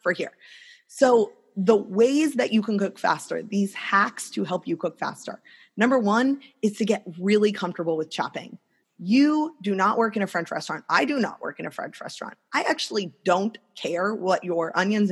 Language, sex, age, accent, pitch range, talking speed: English, female, 20-39, American, 175-230 Hz, 190 wpm